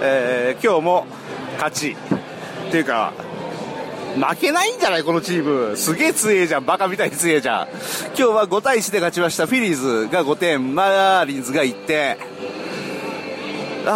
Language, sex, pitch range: Japanese, male, 150-210 Hz